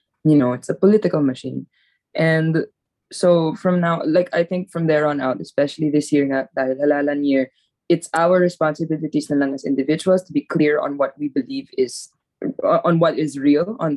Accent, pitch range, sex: Filipino, 145-180 Hz, female